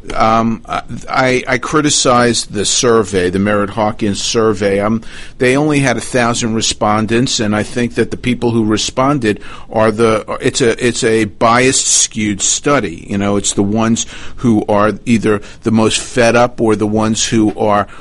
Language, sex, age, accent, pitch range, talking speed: English, male, 50-69, American, 105-125 Hz, 170 wpm